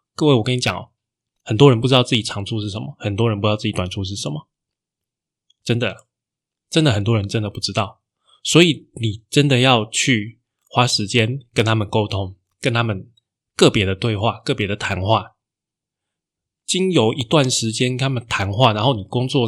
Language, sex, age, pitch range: Chinese, male, 20-39, 105-130 Hz